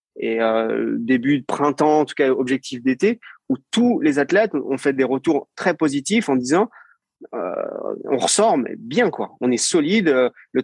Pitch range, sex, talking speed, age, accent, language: 125-180 Hz, male, 180 wpm, 30-49, French, French